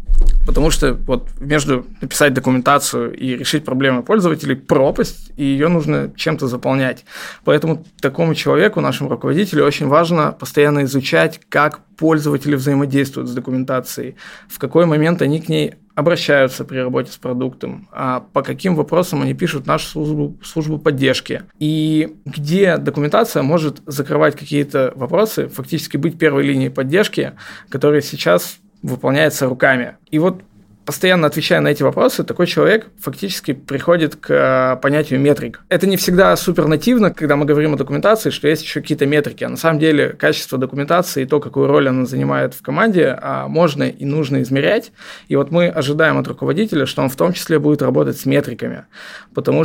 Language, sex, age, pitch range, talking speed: Russian, male, 20-39, 135-160 Hz, 160 wpm